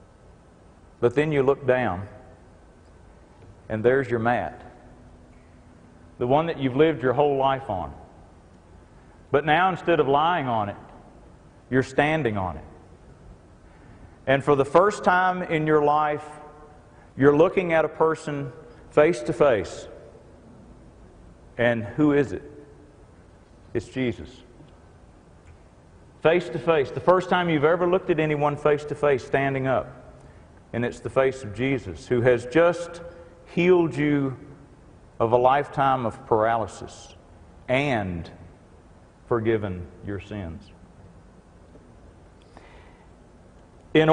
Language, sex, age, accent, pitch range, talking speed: English, male, 40-59, American, 95-150 Hz, 120 wpm